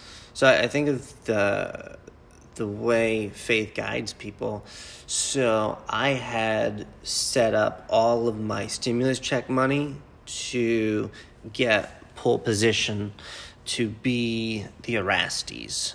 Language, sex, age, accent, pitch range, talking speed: English, male, 30-49, American, 100-120 Hz, 110 wpm